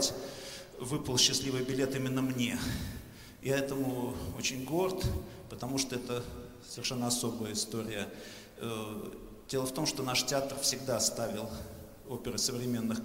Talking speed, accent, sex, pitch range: 115 wpm, native, male, 115-130 Hz